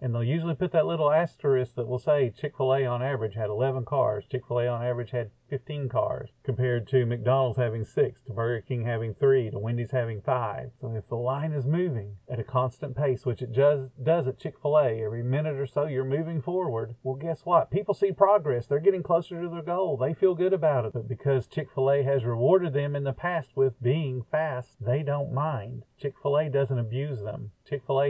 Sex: male